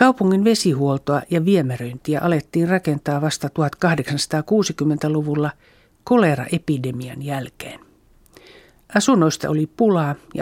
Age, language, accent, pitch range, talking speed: 50-69, Finnish, native, 145-190 Hz, 80 wpm